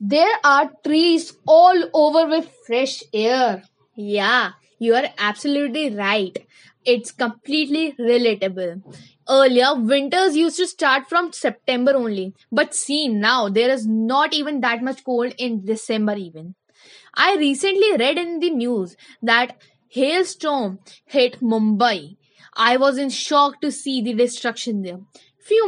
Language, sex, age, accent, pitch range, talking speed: English, female, 20-39, Indian, 230-290 Hz, 135 wpm